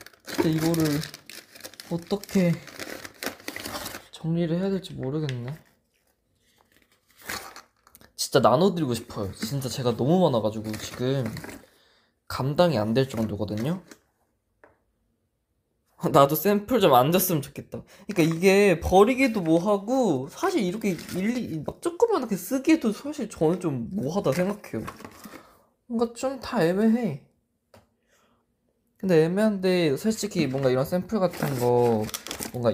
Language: Korean